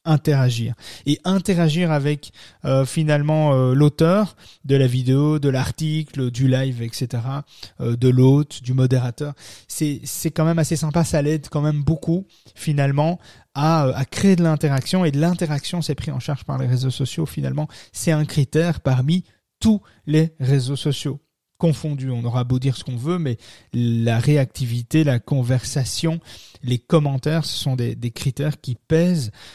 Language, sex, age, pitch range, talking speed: French, male, 30-49, 125-155 Hz, 165 wpm